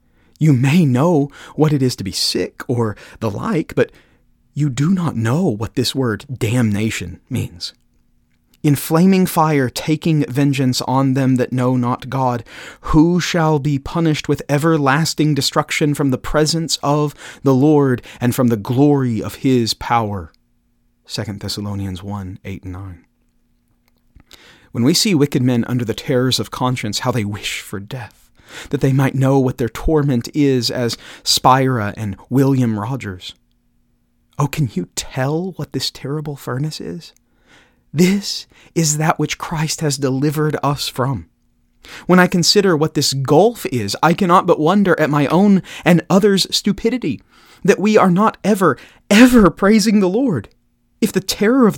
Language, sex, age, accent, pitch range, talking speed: English, male, 30-49, American, 120-160 Hz, 155 wpm